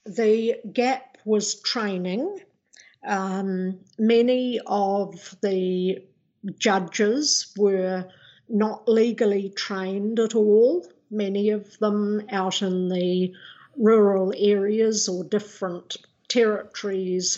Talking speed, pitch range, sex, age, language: 90 wpm, 190-230 Hz, female, 50-69, English